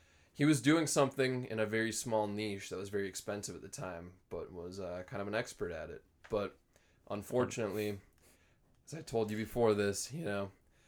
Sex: male